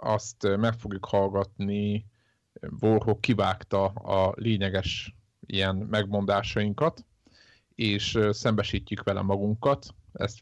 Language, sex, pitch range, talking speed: Hungarian, male, 100-110 Hz, 90 wpm